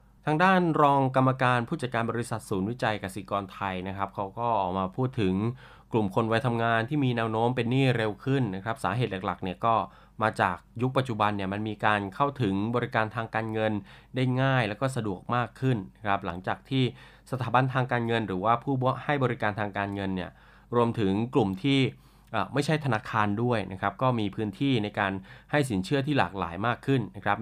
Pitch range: 100-130 Hz